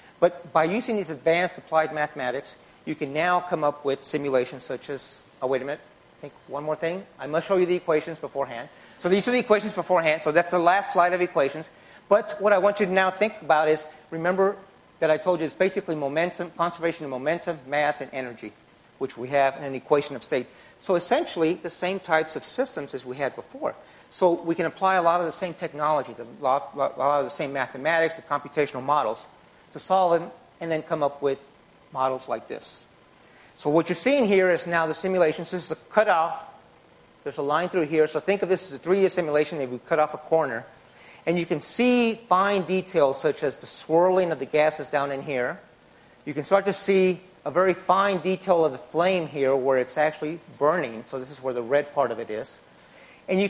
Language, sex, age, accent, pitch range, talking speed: English, male, 40-59, American, 150-185 Hz, 220 wpm